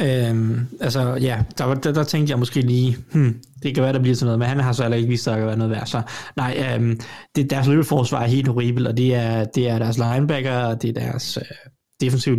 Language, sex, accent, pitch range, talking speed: Danish, male, native, 125-155 Hz, 255 wpm